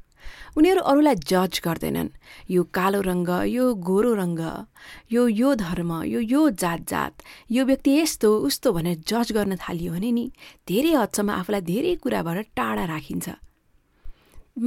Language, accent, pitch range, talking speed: English, Indian, 190-280 Hz, 145 wpm